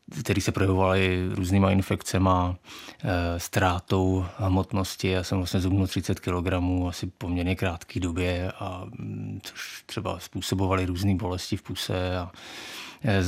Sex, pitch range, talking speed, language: male, 95-105 Hz, 130 wpm, Czech